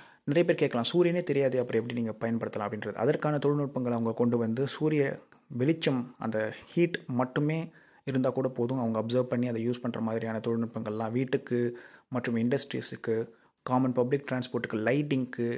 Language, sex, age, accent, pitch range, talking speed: Tamil, male, 30-49, native, 115-140 Hz, 145 wpm